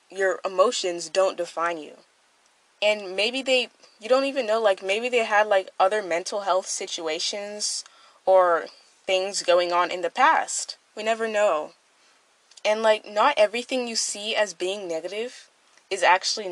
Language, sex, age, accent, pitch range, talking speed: English, female, 10-29, American, 175-215 Hz, 155 wpm